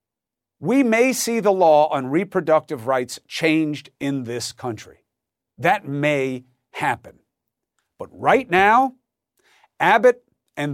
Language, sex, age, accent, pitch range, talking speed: English, male, 50-69, American, 140-235 Hz, 110 wpm